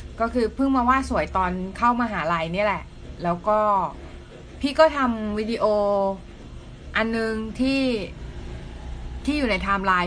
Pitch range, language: 180-225 Hz, Thai